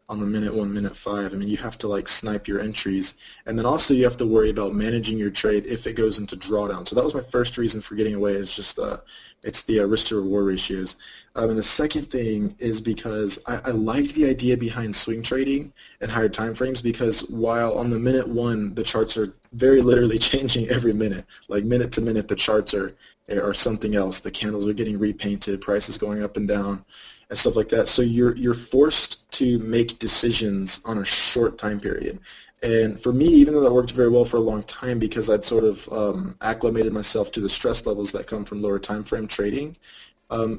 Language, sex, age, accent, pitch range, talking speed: English, male, 20-39, American, 105-120 Hz, 220 wpm